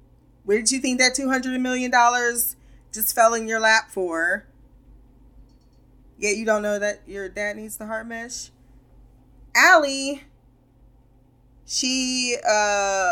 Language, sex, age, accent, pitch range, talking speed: English, female, 20-39, American, 190-255 Hz, 120 wpm